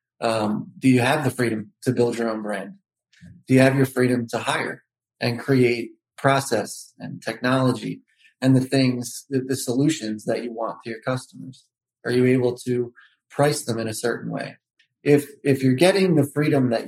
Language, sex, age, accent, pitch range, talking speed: English, male, 30-49, American, 115-135 Hz, 185 wpm